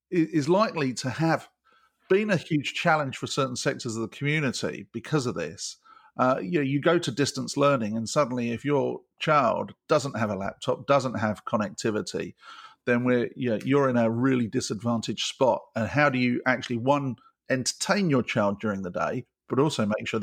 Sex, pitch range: male, 115-145 Hz